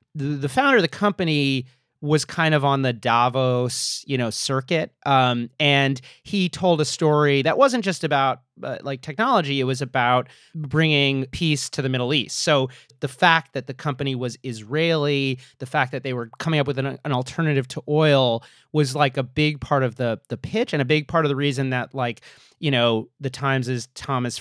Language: English